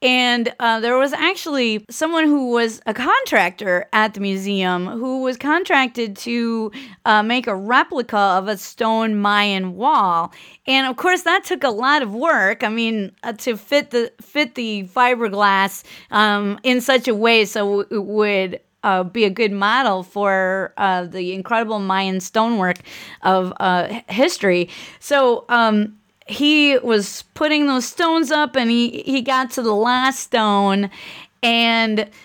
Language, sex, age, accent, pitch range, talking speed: English, female, 30-49, American, 200-265 Hz, 155 wpm